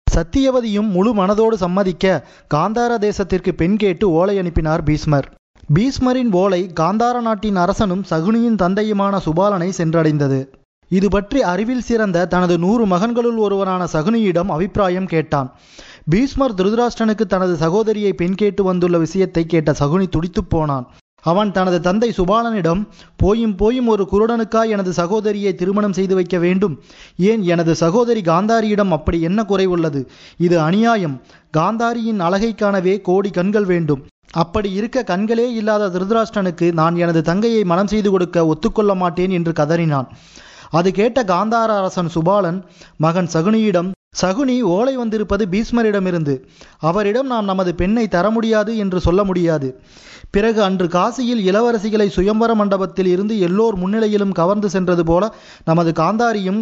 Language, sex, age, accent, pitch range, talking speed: Tamil, male, 20-39, native, 175-215 Hz, 125 wpm